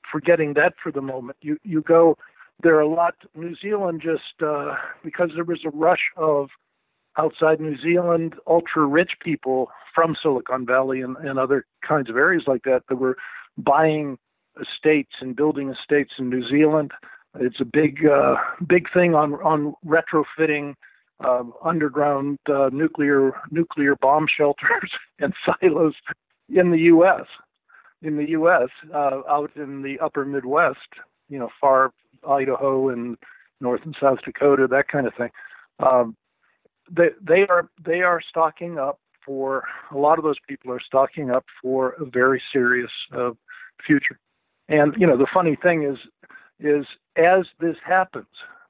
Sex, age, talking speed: male, 50-69, 155 wpm